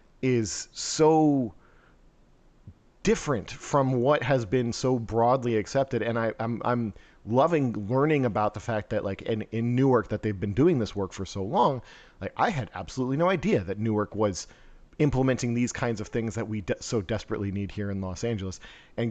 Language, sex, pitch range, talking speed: English, male, 105-130 Hz, 175 wpm